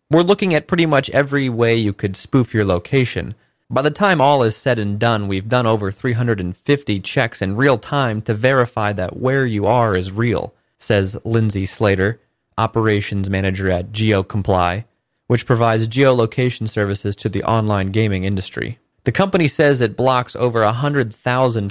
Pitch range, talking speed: 100-130 Hz, 165 wpm